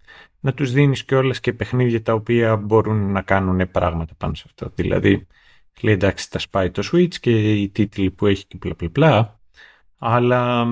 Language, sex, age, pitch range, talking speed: Greek, male, 30-49, 95-125 Hz, 175 wpm